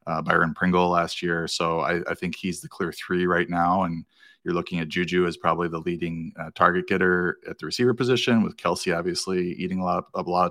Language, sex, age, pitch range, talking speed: English, male, 30-49, 85-95 Hz, 240 wpm